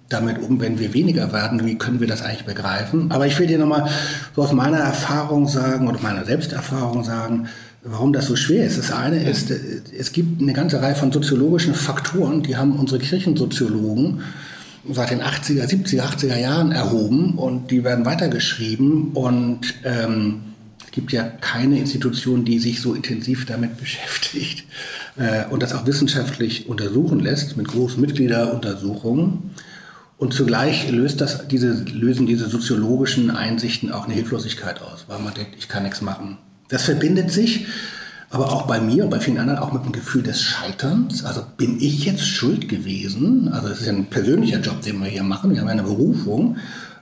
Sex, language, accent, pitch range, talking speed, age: male, German, German, 115-145 Hz, 170 wpm, 60-79